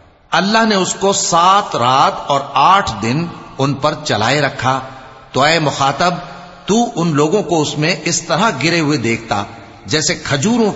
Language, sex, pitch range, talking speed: English, male, 125-175 Hz, 160 wpm